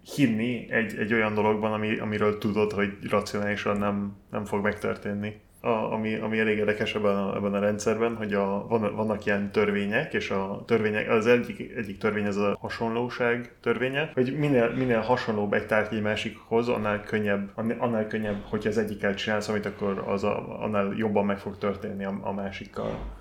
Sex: male